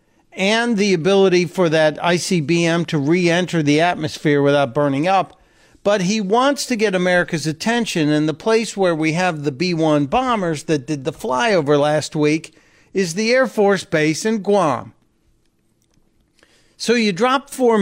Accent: American